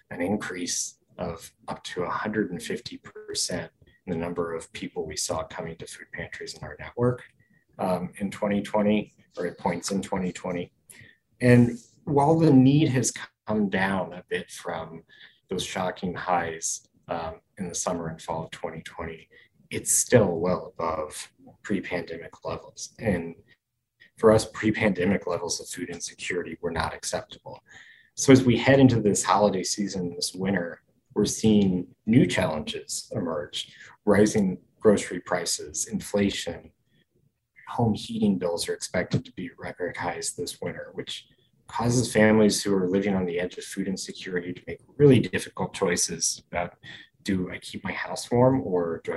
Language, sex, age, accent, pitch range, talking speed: English, male, 30-49, American, 95-130 Hz, 150 wpm